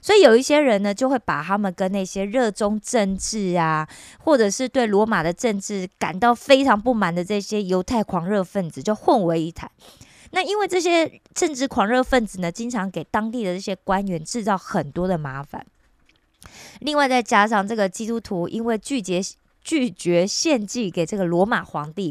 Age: 20-39